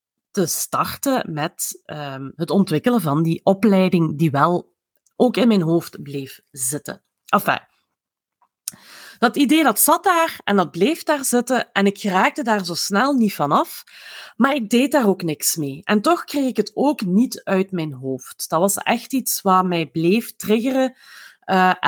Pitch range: 170-255 Hz